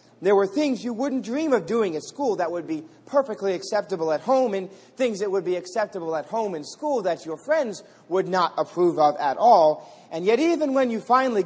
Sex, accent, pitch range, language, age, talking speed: male, American, 170-245 Hz, English, 30-49, 220 wpm